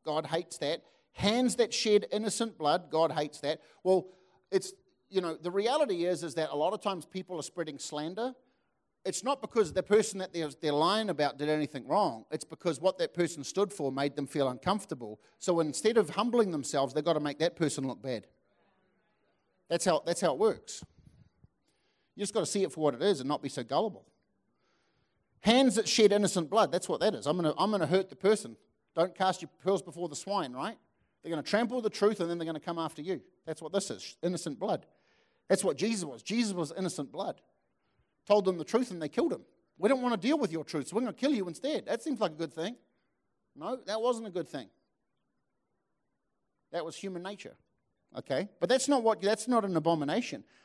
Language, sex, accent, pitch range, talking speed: English, male, Australian, 160-215 Hz, 215 wpm